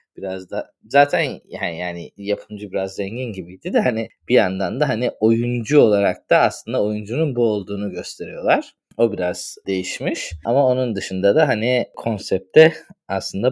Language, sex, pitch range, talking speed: Turkish, male, 95-120 Hz, 140 wpm